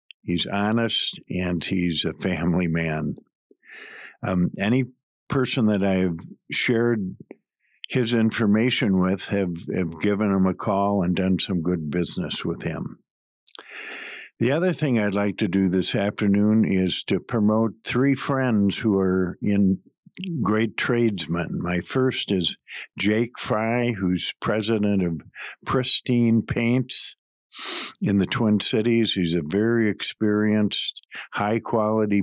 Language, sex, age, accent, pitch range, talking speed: English, male, 50-69, American, 95-120 Hz, 125 wpm